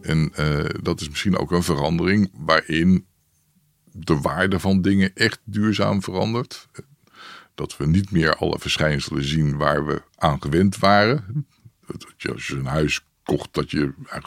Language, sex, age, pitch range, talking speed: Dutch, male, 50-69, 80-110 Hz, 150 wpm